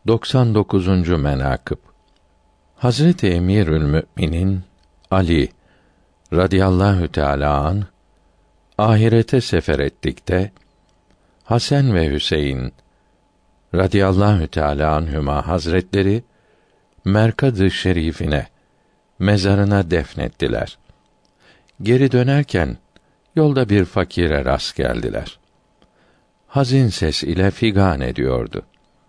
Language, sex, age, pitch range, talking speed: Turkish, male, 60-79, 80-110 Hz, 70 wpm